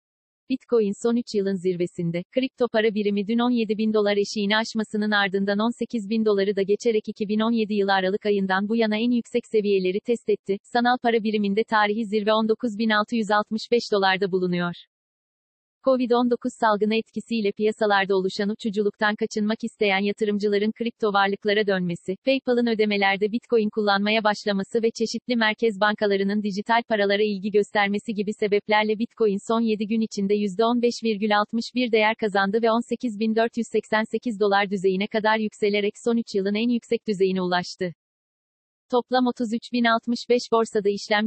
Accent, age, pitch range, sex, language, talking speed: native, 40-59, 205-230 Hz, female, Turkish, 130 wpm